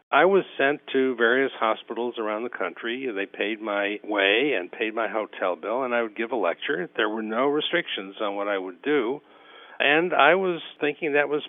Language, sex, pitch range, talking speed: English, male, 110-140 Hz, 205 wpm